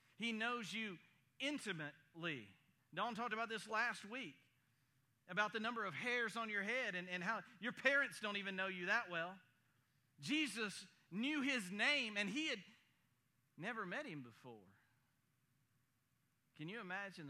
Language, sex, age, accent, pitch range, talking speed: English, male, 50-69, American, 130-190 Hz, 150 wpm